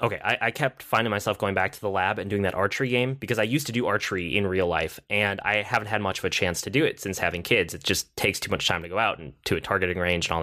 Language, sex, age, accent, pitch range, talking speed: English, male, 10-29, American, 95-120 Hz, 315 wpm